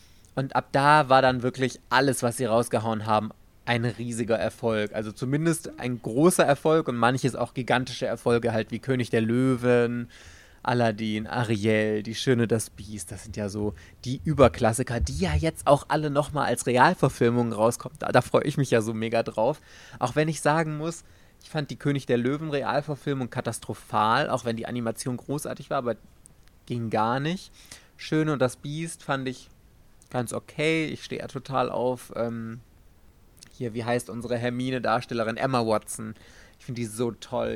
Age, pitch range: 20-39, 115-150 Hz